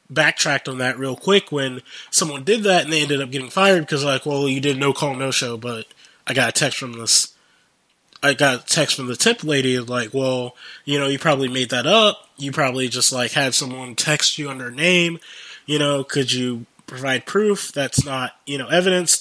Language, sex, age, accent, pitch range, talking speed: English, male, 20-39, American, 130-170 Hz, 215 wpm